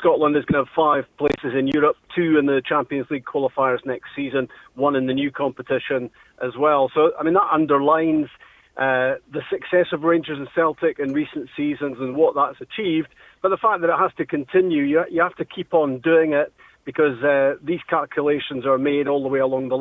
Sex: male